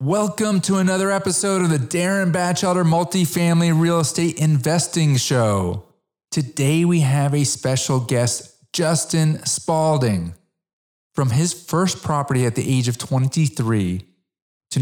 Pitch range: 110-155 Hz